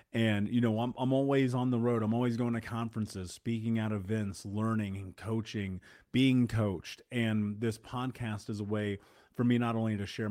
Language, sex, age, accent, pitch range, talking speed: English, male, 30-49, American, 105-125 Hz, 200 wpm